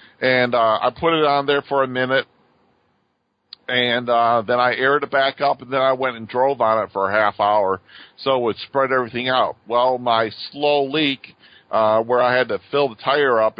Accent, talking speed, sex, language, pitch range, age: American, 215 wpm, male, German, 120-145 Hz, 50-69